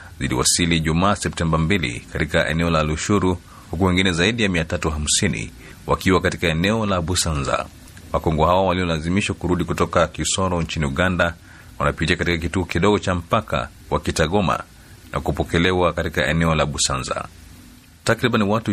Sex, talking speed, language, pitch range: male, 135 wpm, Swahili, 80-95 Hz